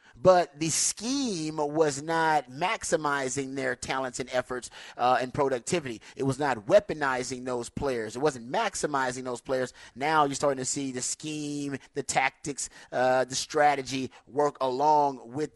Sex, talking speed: male, 150 wpm